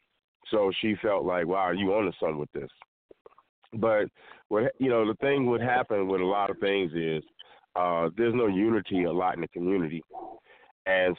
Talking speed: 195 wpm